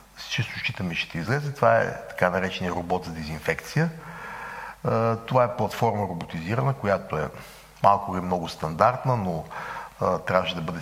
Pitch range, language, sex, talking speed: 95-130 Hz, Bulgarian, male, 140 wpm